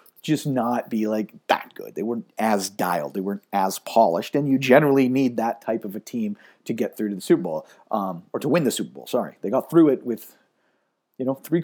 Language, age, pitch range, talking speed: English, 40-59, 115-155 Hz, 235 wpm